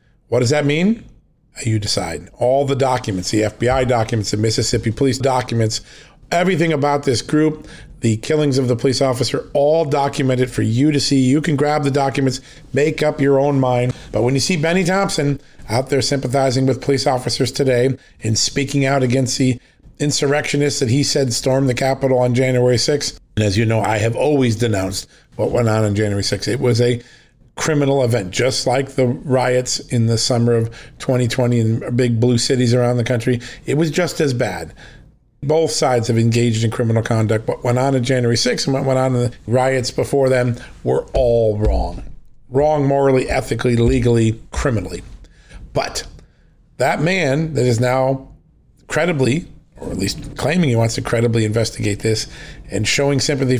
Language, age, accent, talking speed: English, 40-59, American, 180 wpm